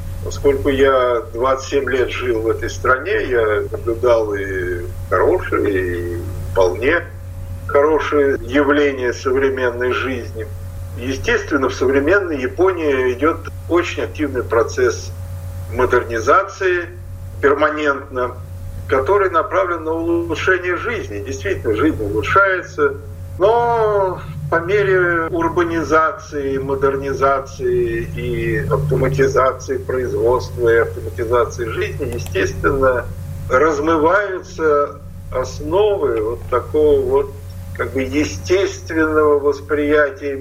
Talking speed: 85 wpm